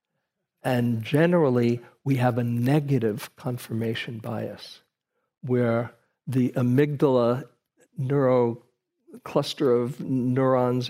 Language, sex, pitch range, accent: English, male, 120-145 Hz, American